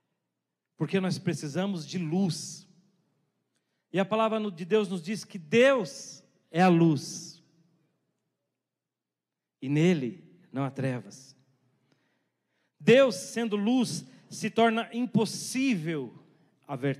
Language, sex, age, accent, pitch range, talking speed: Portuguese, male, 40-59, Brazilian, 160-210 Hz, 100 wpm